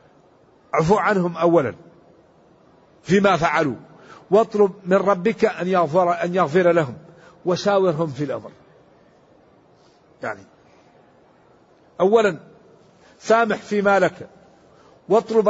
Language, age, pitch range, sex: English, 50-69, 185-230 Hz, male